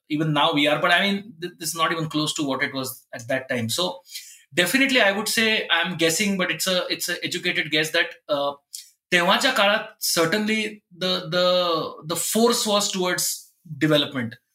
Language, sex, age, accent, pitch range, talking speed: Marathi, male, 20-39, native, 155-205 Hz, 190 wpm